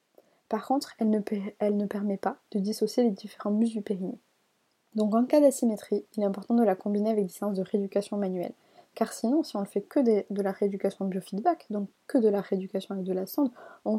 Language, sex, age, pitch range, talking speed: French, female, 20-39, 195-235 Hz, 230 wpm